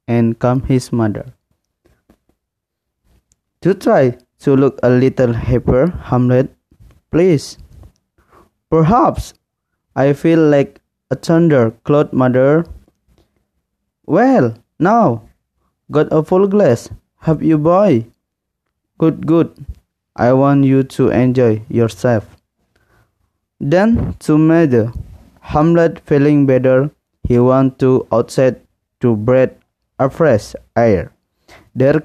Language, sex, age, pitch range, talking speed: Indonesian, male, 20-39, 115-155 Hz, 100 wpm